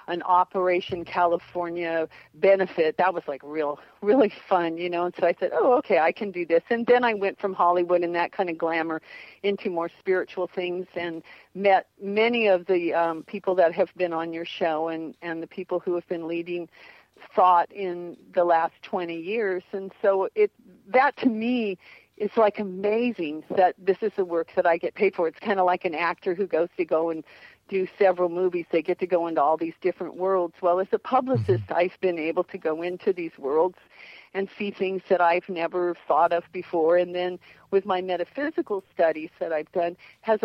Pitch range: 170-195 Hz